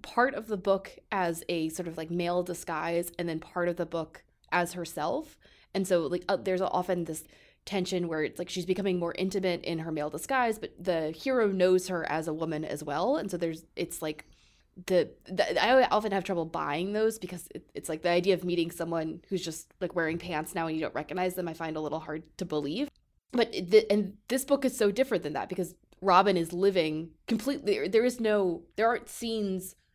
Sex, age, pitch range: female, 20-39, 165-195 Hz